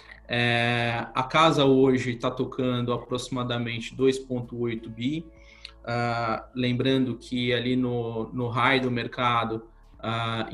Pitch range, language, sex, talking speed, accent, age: 115-130 Hz, Portuguese, male, 100 wpm, Brazilian, 20-39